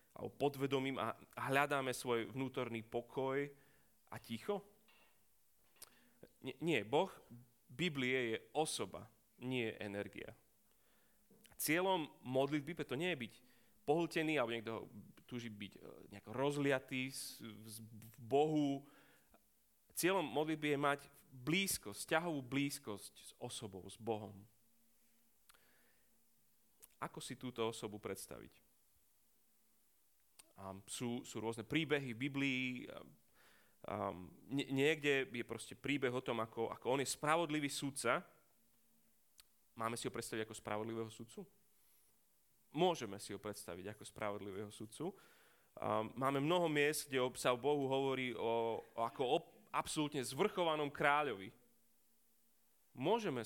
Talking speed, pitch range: 115 wpm, 110-145 Hz